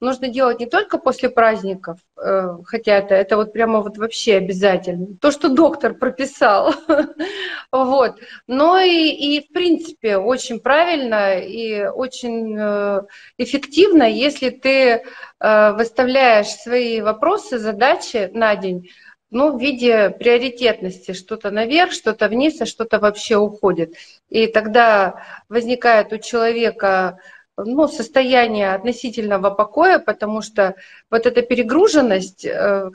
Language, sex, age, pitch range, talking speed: Russian, female, 30-49, 205-265 Hz, 110 wpm